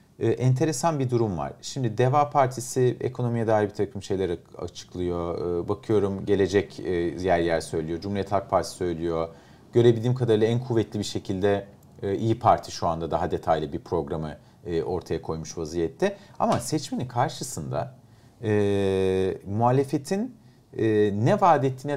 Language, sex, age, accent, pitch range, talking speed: Turkish, male, 40-59, native, 100-130 Hz, 145 wpm